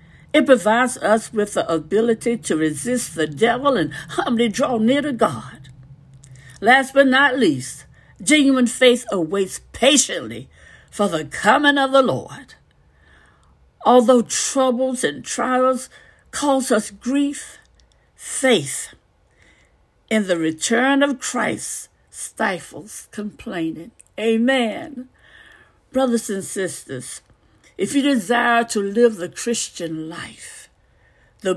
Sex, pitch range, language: female, 185-260 Hz, English